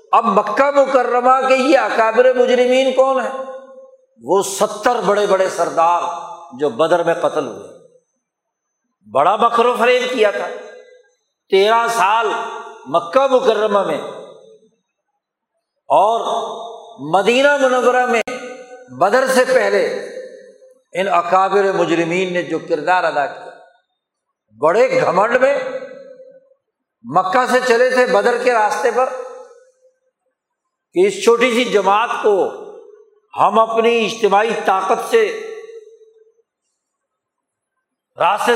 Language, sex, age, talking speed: Urdu, male, 60-79, 105 wpm